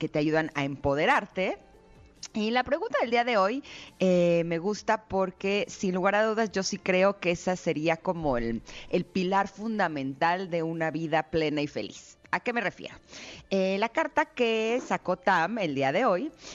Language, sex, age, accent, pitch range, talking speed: Spanish, female, 30-49, Mexican, 155-210 Hz, 185 wpm